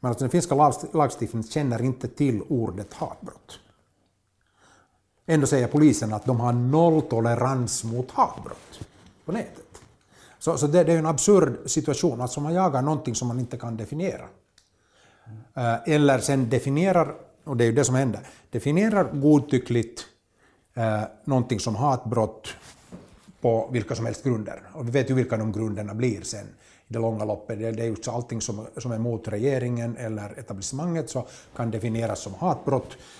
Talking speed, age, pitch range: 155 wpm, 60-79, 110-140 Hz